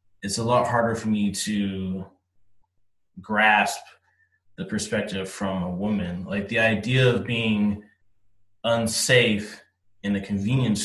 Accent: American